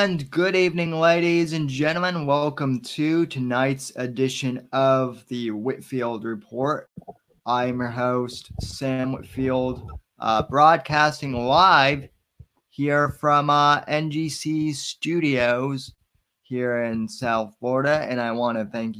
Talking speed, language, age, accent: 115 wpm, English, 20-39, American